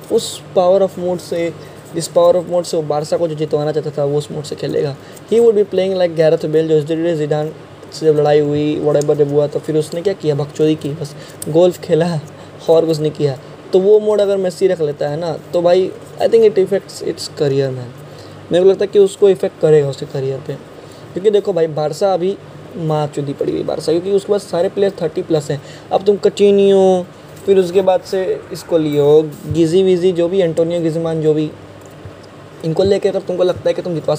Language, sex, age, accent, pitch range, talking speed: Hindi, male, 20-39, native, 150-195 Hz, 220 wpm